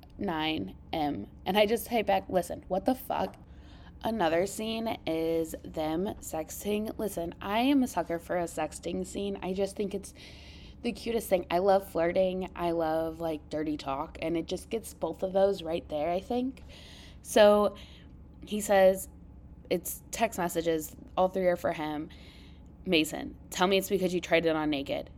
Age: 20-39